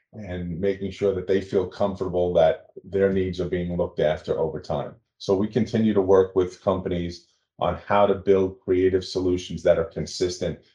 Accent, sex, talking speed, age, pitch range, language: American, male, 180 wpm, 40-59, 90-100 Hz, English